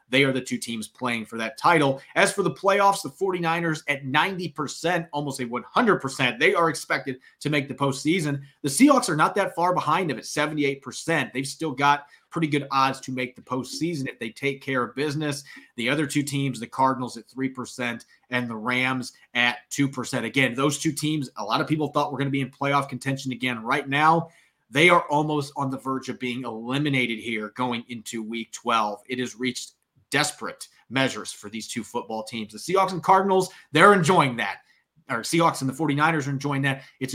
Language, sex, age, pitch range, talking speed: English, male, 30-49, 125-155 Hz, 200 wpm